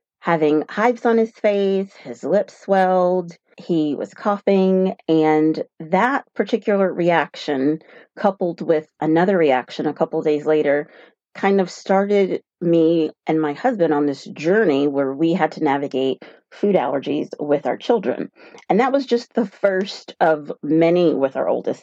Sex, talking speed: female, 150 wpm